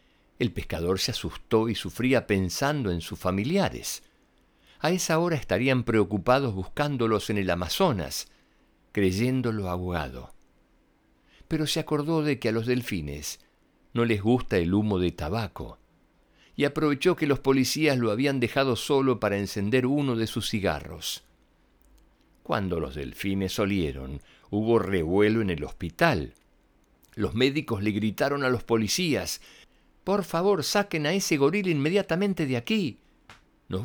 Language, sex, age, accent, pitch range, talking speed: Spanish, male, 60-79, Argentinian, 95-140 Hz, 135 wpm